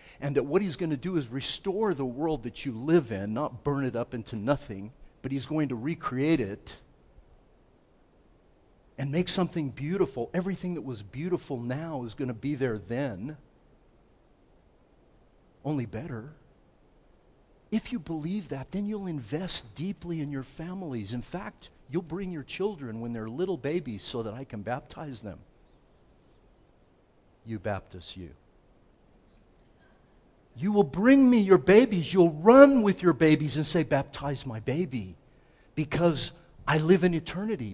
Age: 50-69